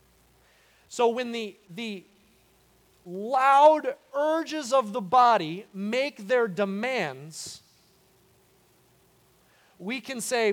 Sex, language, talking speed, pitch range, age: male, English, 85 wpm, 145-205 Hz, 30-49